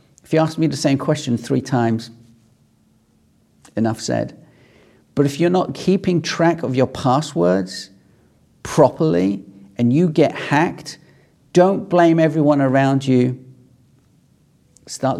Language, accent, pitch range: English, British, 110-140 Hz